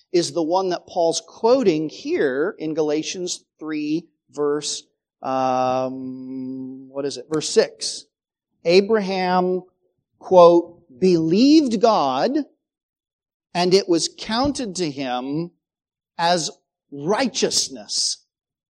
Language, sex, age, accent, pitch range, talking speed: English, male, 40-59, American, 150-205 Hz, 95 wpm